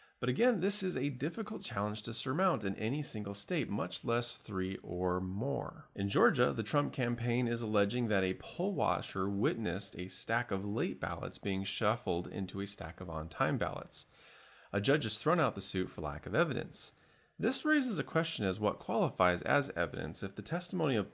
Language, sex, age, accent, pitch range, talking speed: English, male, 30-49, American, 95-125 Hz, 185 wpm